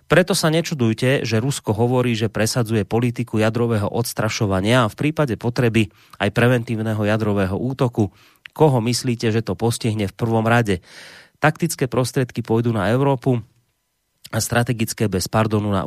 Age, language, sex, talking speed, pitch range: 30-49, Slovak, male, 140 wpm, 110-130 Hz